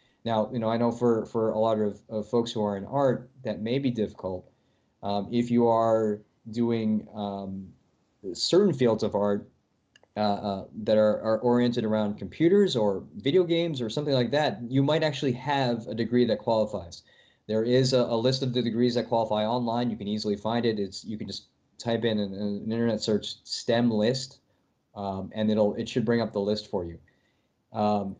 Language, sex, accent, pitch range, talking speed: English, male, American, 105-120 Hz, 200 wpm